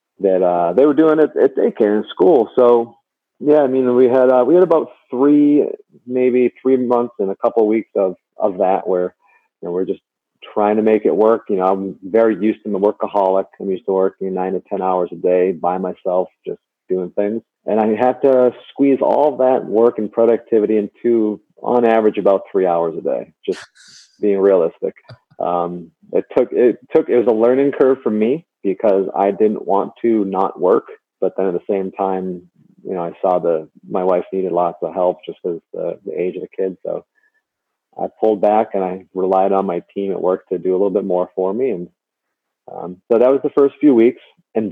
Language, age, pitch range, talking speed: English, 40-59, 95-125 Hz, 215 wpm